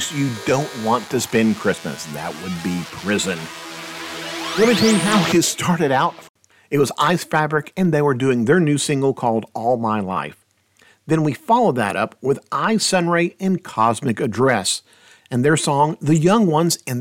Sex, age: male, 50-69